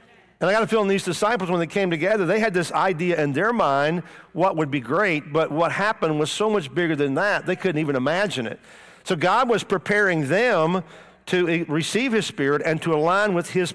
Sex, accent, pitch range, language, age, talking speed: male, American, 160-200 Hz, English, 50-69, 220 wpm